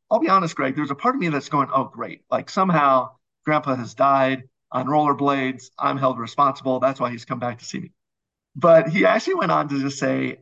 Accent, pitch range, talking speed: American, 125-155 Hz, 225 wpm